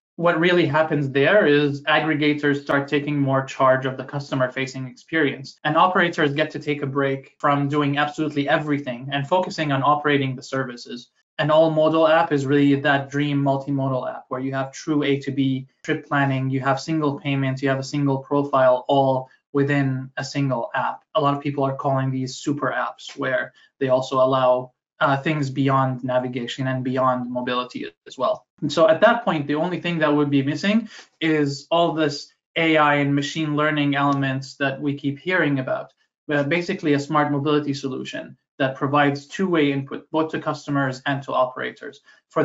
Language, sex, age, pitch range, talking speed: English, male, 20-39, 135-150 Hz, 180 wpm